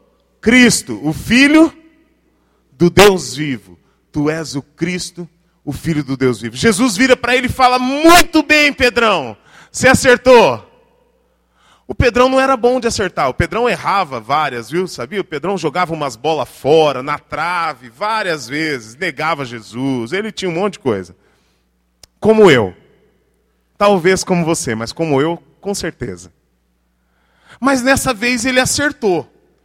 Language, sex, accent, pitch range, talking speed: Portuguese, male, Brazilian, 140-230 Hz, 145 wpm